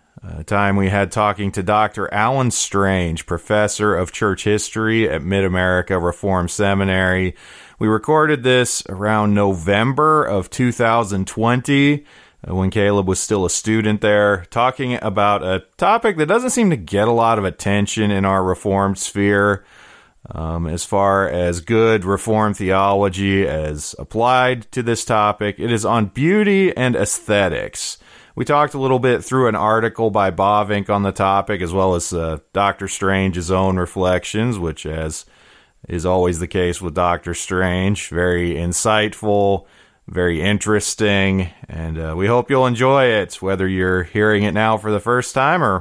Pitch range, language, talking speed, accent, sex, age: 90-110 Hz, English, 155 wpm, American, male, 30-49